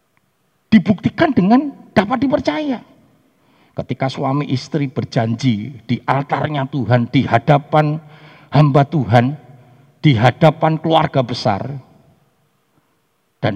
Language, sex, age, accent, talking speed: Indonesian, male, 50-69, native, 90 wpm